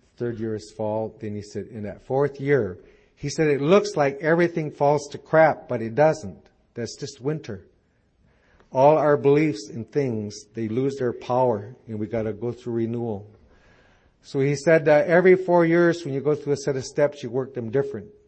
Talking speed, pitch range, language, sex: 200 wpm, 110-135 Hz, English, male